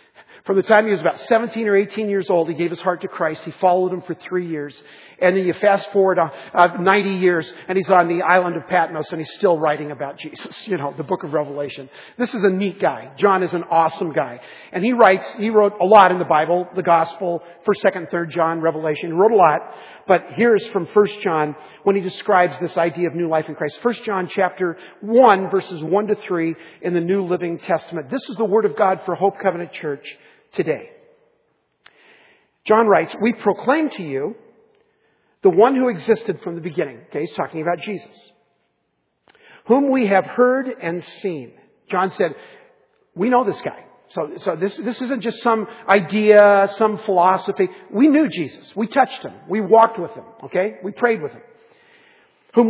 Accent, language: American, English